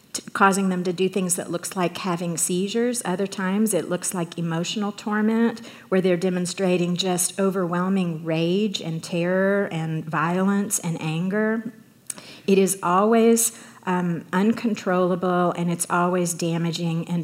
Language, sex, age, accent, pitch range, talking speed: English, female, 40-59, American, 175-200 Hz, 135 wpm